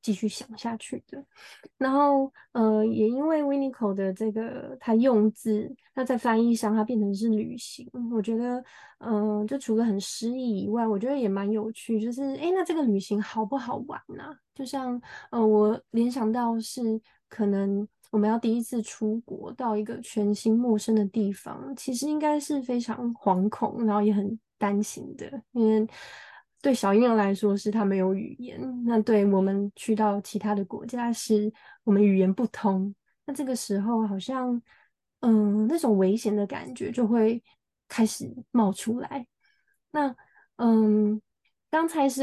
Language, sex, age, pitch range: Chinese, female, 20-39, 210-250 Hz